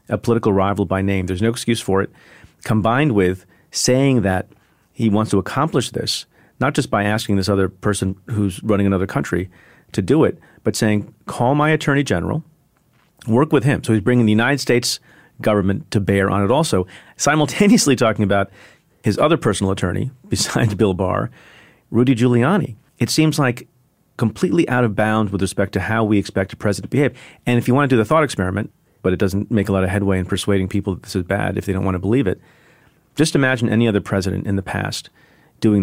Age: 40-59